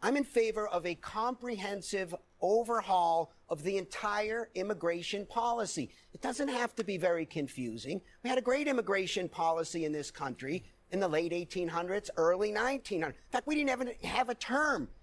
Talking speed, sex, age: 170 wpm, male, 50-69